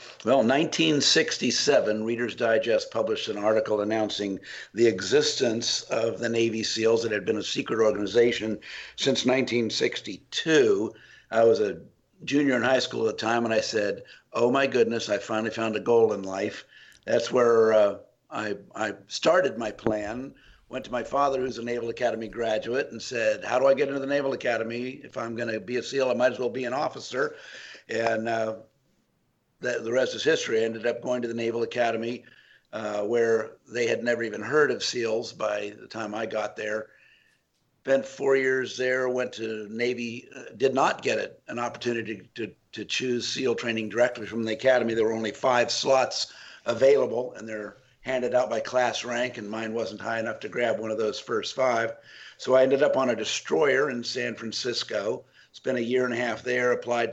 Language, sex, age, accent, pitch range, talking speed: English, male, 60-79, American, 110-125 Hz, 190 wpm